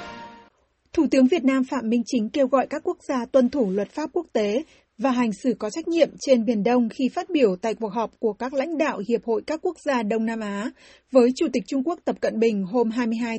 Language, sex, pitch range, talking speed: Vietnamese, female, 230-275 Hz, 240 wpm